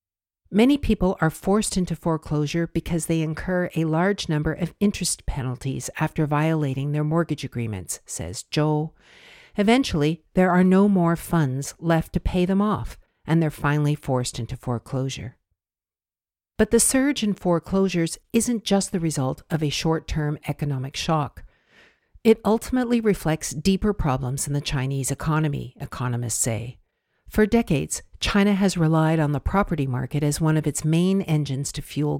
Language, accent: English, American